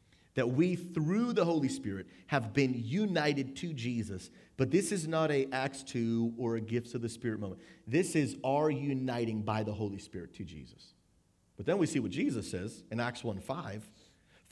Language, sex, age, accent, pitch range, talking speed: English, male, 30-49, American, 105-145 Hz, 185 wpm